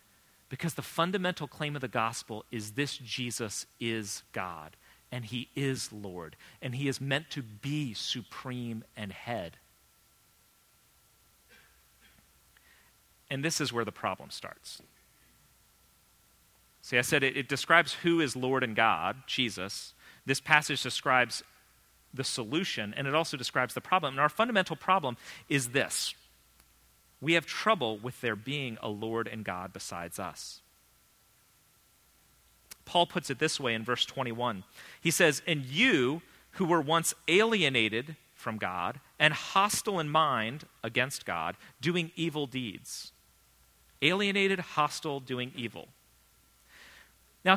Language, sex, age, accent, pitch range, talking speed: English, male, 40-59, American, 115-160 Hz, 130 wpm